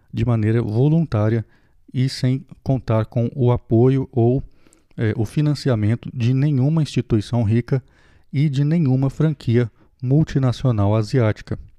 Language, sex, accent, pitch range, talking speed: Portuguese, male, Brazilian, 110-135 Hz, 110 wpm